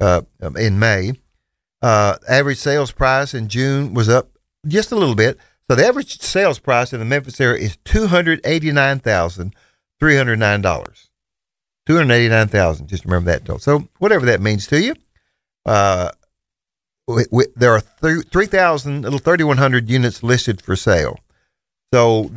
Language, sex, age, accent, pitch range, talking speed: English, male, 50-69, American, 105-145 Hz, 175 wpm